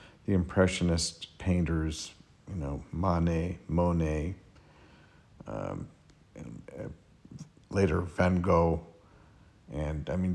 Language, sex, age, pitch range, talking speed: English, male, 50-69, 85-105 Hz, 95 wpm